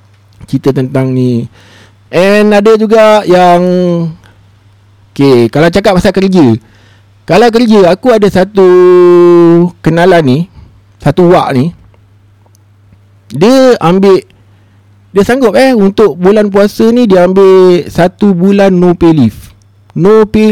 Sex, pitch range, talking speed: male, 110-185 Hz, 115 wpm